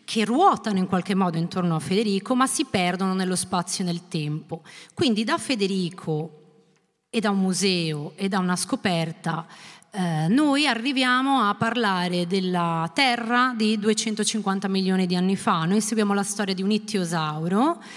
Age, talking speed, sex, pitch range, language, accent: 30-49, 155 wpm, female, 185-245 Hz, Italian, native